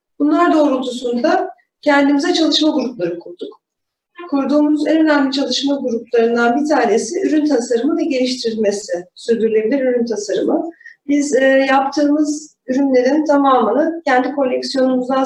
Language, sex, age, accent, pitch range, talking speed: Turkish, female, 40-59, native, 250-305 Hz, 100 wpm